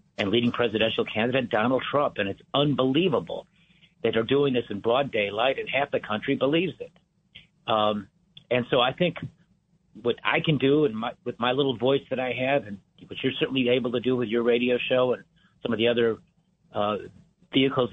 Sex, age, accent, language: male, 50-69, American, English